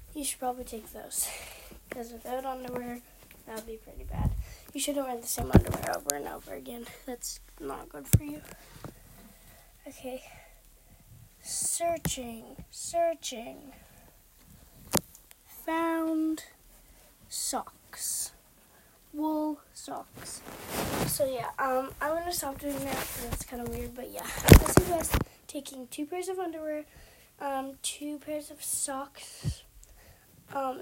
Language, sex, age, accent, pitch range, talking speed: English, female, 20-39, American, 255-310 Hz, 120 wpm